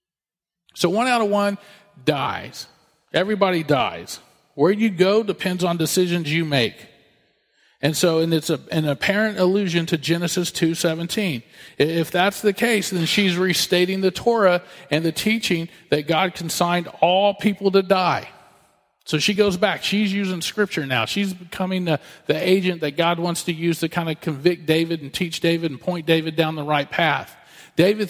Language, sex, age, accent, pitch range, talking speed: English, male, 40-59, American, 165-195 Hz, 165 wpm